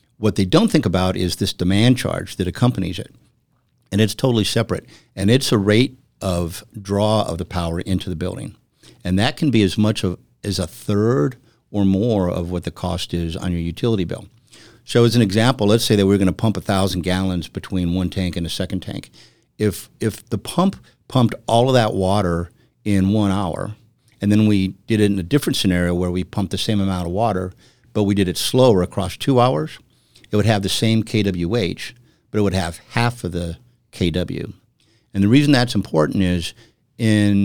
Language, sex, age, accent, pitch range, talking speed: English, male, 50-69, American, 90-115 Hz, 200 wpm